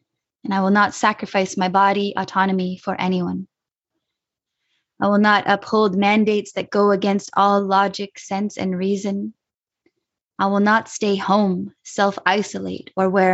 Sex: female